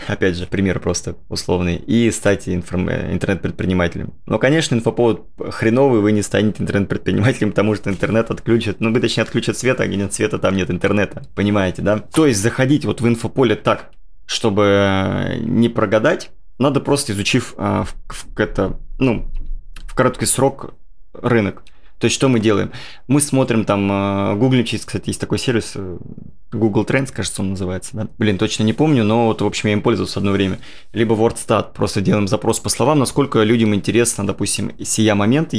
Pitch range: 100-125 Hz